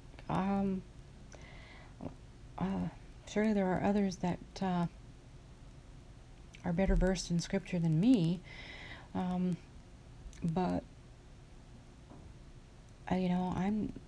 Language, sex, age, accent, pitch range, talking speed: English, female, 40-59, American, 135-180 Hz, 90 wpm